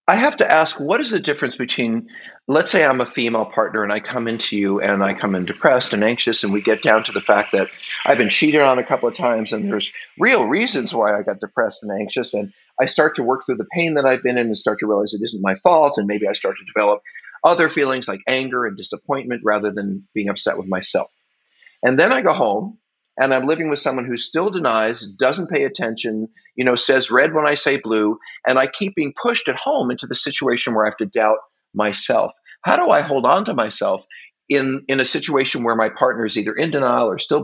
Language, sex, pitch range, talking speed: English, male, 110-135 Hz, 240 wpm